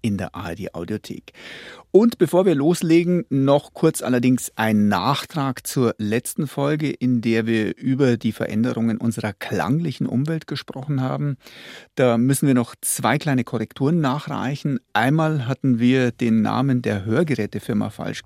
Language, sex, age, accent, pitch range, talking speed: German, male, 40-59, German, 115-140 Hz, 140 wpm